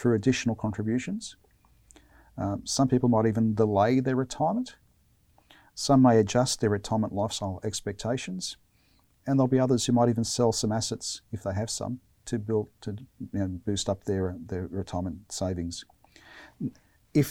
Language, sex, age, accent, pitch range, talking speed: English, male, 40-59, Australian, 110-130 Hz, 155 wpm